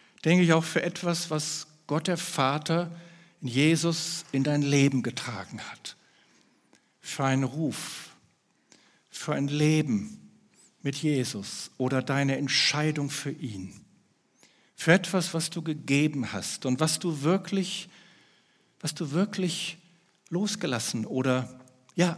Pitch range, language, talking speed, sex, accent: 130-170 Hz, German, 120 wpm, male, German